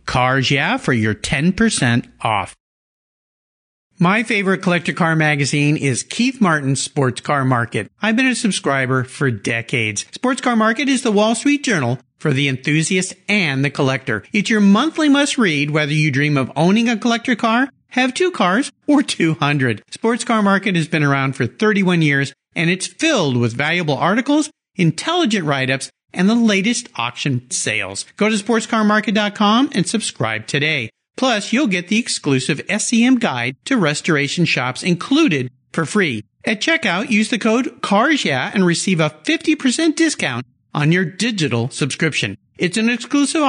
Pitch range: 140-225 Hz